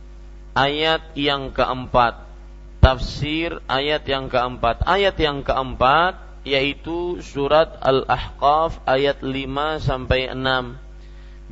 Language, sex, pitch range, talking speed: Malay, male, 130-155 Hz, 90 wpm